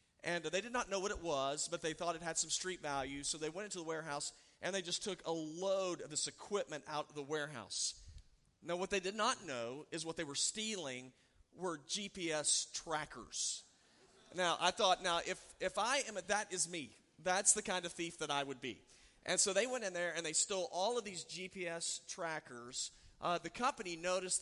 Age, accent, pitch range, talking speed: 40-59, American, 145-185 Hz, 215 wpm